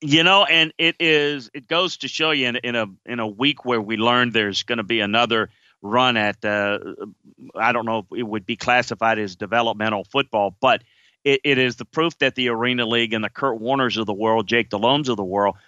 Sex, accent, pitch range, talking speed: male, American, 120-170 Hz, 235 wpm